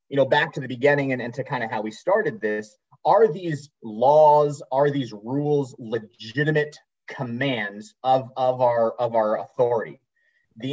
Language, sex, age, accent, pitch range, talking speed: English, male, 30-49, American, 125-155 Hz, 170 wpm